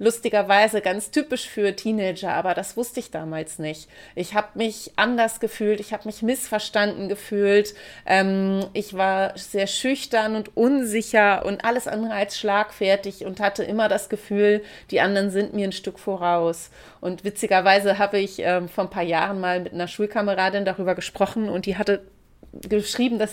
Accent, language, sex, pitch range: German, German, female, 185-220 Hz